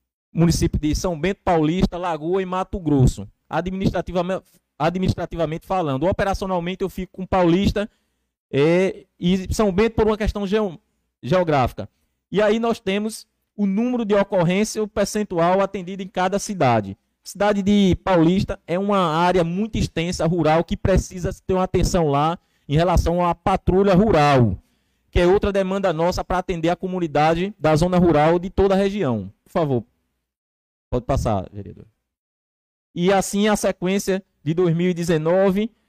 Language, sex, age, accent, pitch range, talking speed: Portuguese, male, 20-39, Brazilian, 165-205 Hz, 140 wpm